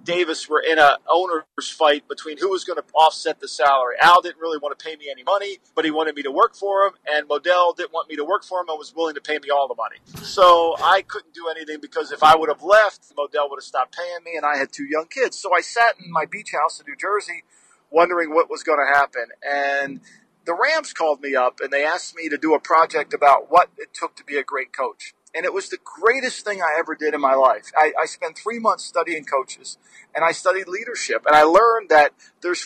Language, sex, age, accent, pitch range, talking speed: English, male, 40-59, American, 155-210 Hz, 255 wpm